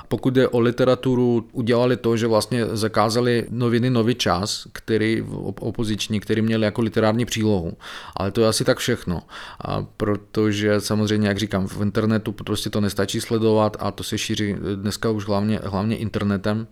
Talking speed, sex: 160 wpm, male